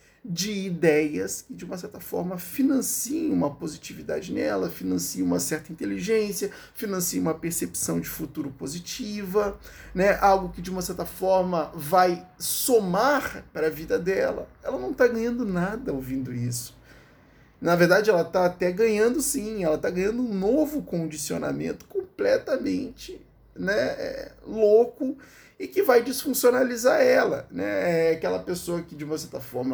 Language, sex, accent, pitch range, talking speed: Portuguese, male, Brazilian, 155-215 Hz, 140 wpm